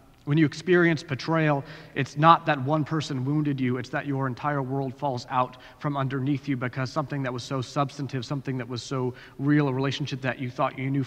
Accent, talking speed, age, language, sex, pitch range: American, 210 wpm, 30-49, English, male, 135-155 Hz